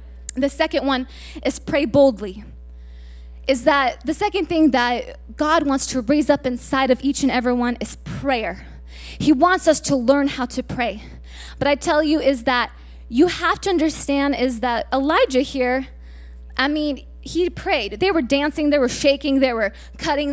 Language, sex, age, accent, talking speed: English, female, 20-39, American, 175 wpm